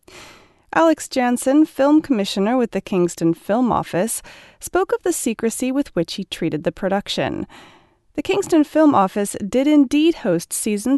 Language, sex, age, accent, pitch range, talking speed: English, female, 30-49, American, 175-280 Hz, 150 wpm